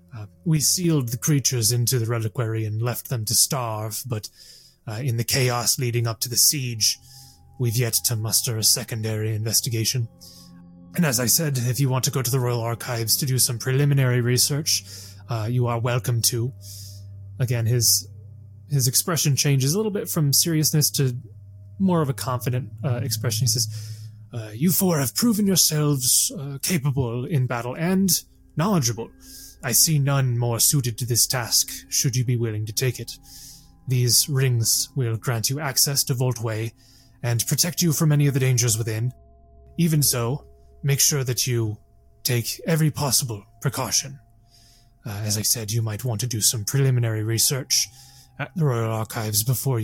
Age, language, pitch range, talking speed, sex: 20-39, English, 110-135 Hz, 170 wpm, male